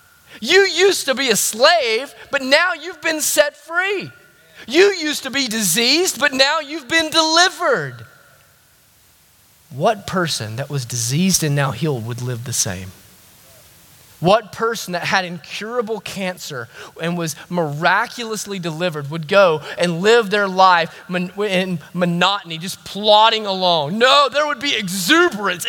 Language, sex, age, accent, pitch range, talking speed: English, male, 30-49, American, 185-305 Hz, 140 wpm